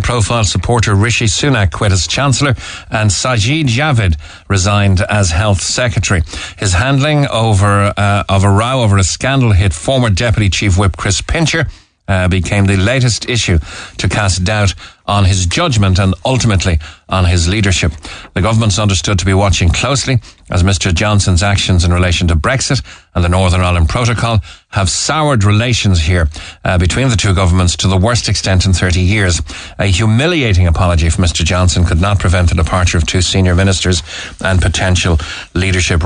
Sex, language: male, English